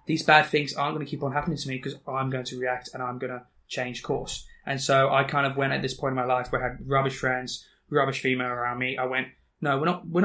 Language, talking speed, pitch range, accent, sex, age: English, 285 wpm, 130-145 Hz, British, male, 20-39